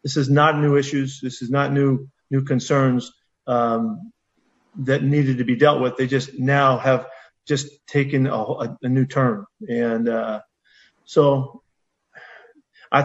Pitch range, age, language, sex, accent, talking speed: 130-150 Hz, 50-69, English, male, American, 145 wpm